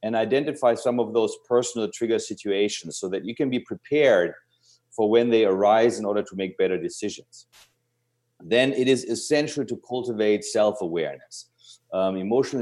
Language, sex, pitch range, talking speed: English, male, 100-120 Hz, 150 wpm